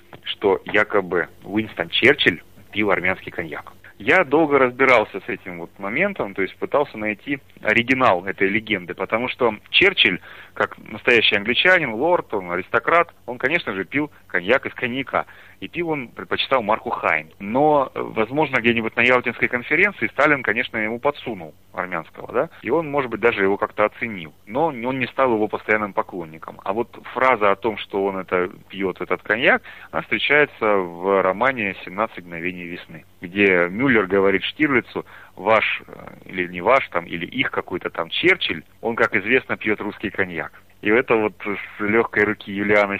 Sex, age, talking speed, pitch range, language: male, 30-49, 160 wpm, 90-115 Hz, Russian